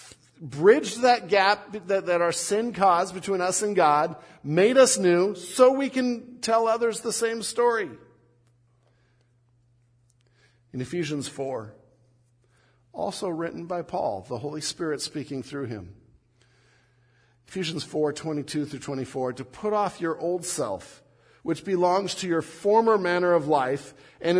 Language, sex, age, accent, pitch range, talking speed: English, male, 50-69, American, 130-210 Hz, 135 wpm